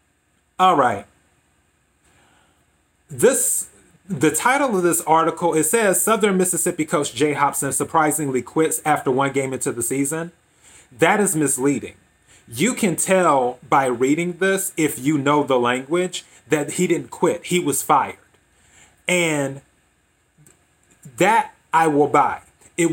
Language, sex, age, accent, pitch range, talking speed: English, male, 30-49, American, 140-180 Hz, 130 wpm